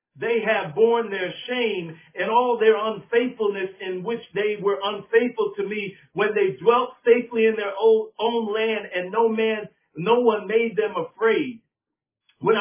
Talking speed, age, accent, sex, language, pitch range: 155 wpm, 50-69, American, male, English, 215-295 Hz